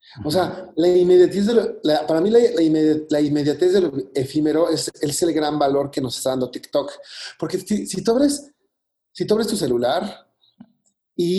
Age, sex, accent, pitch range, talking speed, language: 40-59, male, Mexican, 140-195 Hz, 190 wpm, Spanish